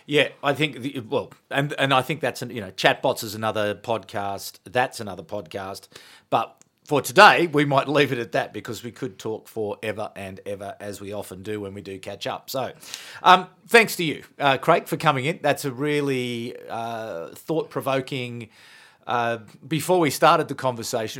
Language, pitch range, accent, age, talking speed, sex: English, 115-150 Hz, Australian, 40-59, 185 wpm, male